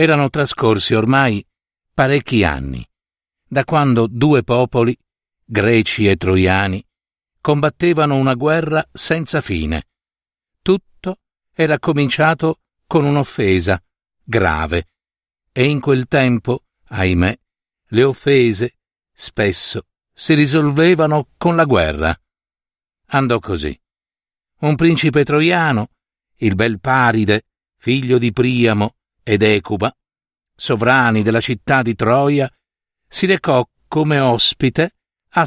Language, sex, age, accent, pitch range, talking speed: Italian, male, 50-69, native, 105-150 Hz, 100 wpm